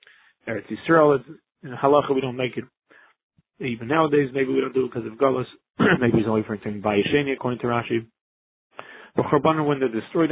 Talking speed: 180 wpm